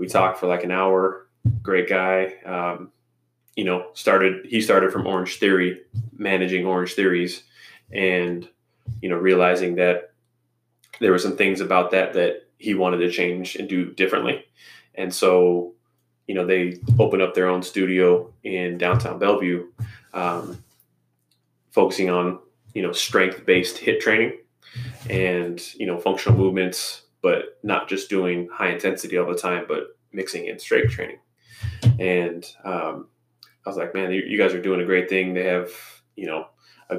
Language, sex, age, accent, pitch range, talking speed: English, male, 20-39, American, 90-110 Hz, 160 wpm